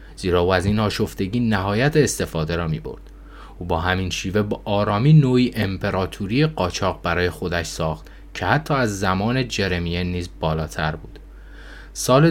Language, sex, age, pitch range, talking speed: Persian, male, 30-49, 85-110 Hz, 150 wpm